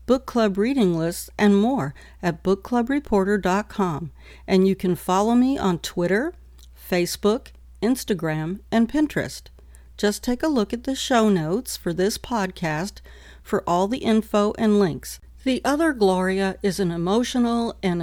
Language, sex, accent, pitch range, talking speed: English, female, American, 175-220 Hz, 145 wpm